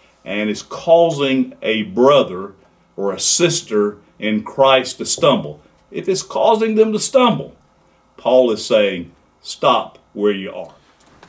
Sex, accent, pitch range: male, American, 90-135 Hz